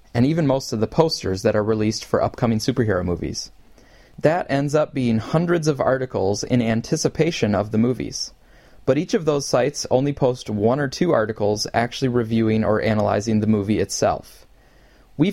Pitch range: 110-135 Hz